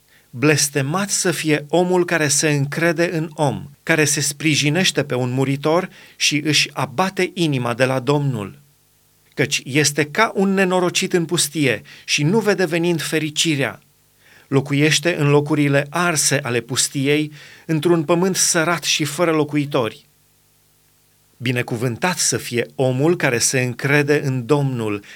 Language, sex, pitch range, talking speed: Romanian, male, 135-170 Hz, 130 wpm